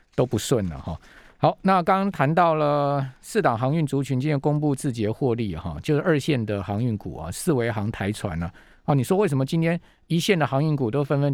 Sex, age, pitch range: male, 50-69, 115-155 Hz